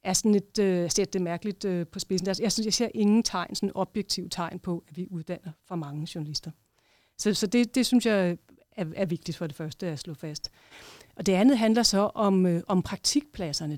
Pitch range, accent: 180-220 Hz, native